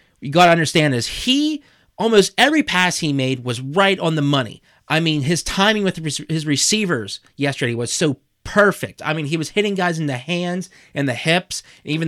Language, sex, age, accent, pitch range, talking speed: English, male, 30-49, American, 145-200 Hz, 200 wpm